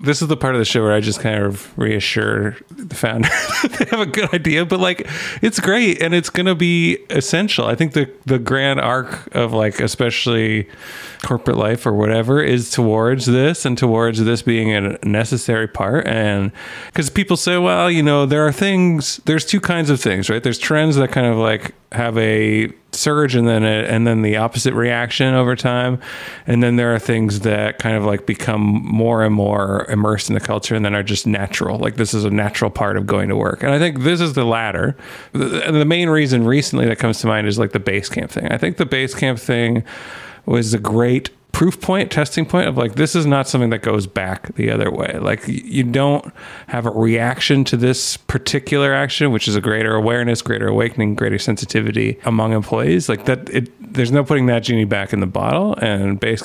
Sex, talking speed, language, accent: male, 215 wpm, English, American